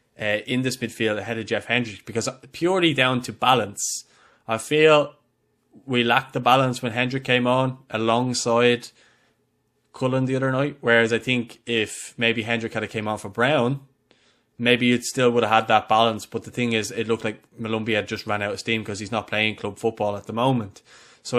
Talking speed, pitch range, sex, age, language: 200 wpm, 105-120 Hz, male, 20-39, English